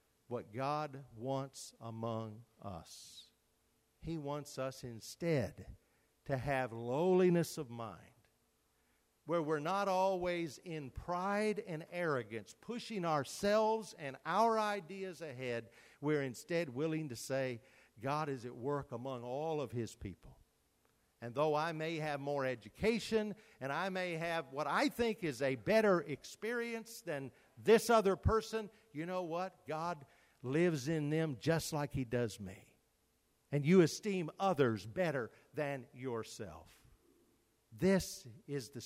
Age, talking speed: 50-69, 135 wpm